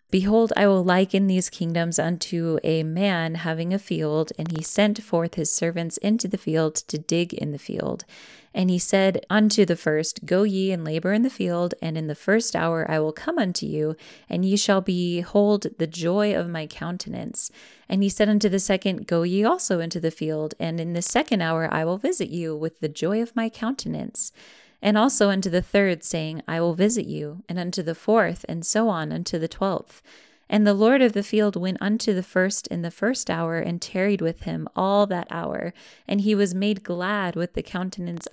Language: English